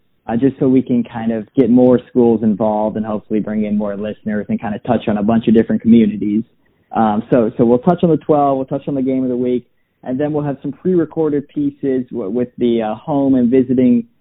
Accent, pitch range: American, 110-135 Hz